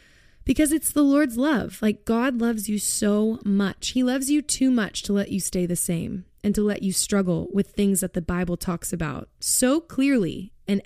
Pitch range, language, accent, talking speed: 180-245 Hz, English, American, 205 wpm